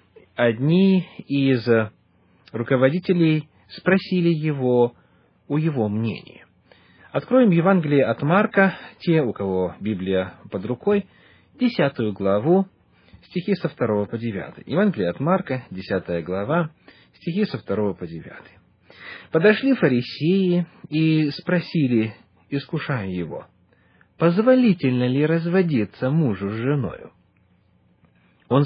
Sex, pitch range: male, 105-175 Hz